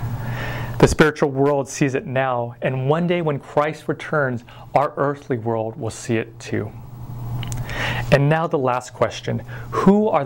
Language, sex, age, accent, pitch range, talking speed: English, male, 30-49, American, 120-155 Hz, 150 wpm